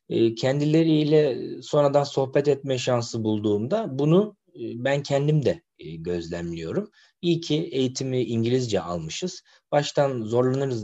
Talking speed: 100 wpm